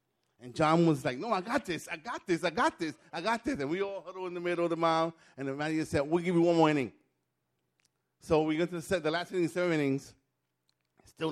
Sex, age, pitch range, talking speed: male, 30-49, 140-195 Hz, 260 wpm